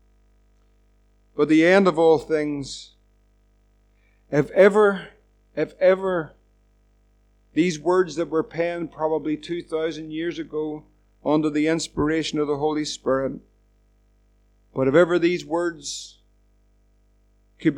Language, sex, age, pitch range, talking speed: English, male, 50-69, 110-160 Hz, 110 wpm